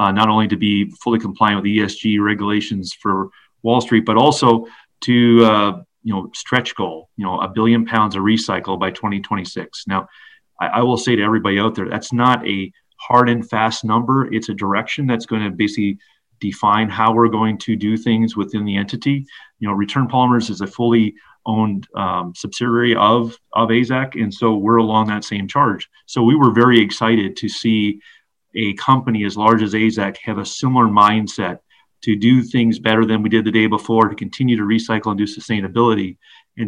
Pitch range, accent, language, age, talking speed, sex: 105-115 Hz, American, English, 30-49, 195 wpm, male